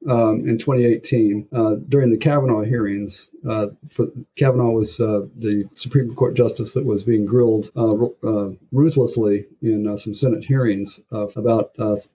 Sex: male